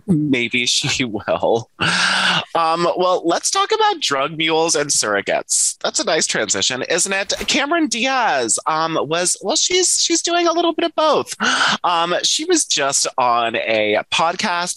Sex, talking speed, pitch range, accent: male, 155 wpm, 120-180 Hz, American